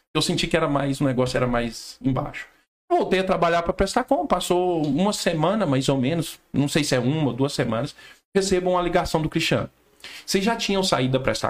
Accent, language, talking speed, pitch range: Brazilian, Portuguese, 220 wpm, 140-205 Hz